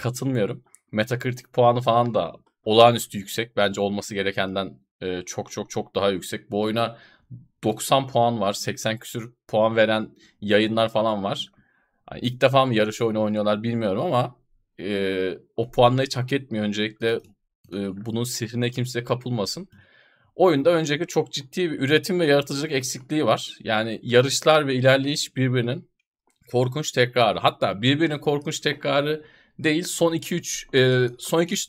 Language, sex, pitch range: Turkish, male, 110-145 Hz